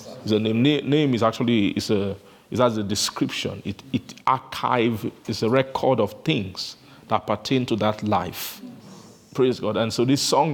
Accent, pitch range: Nigerian, 110-140 Hz